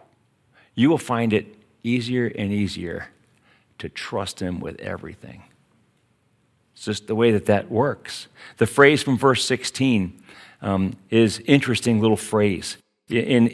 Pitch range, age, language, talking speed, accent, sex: 105-125 Hz, 50-69, English, 135 wpm, American, male